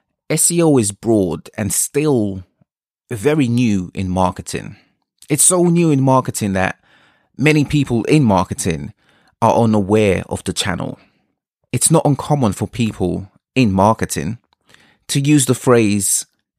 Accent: British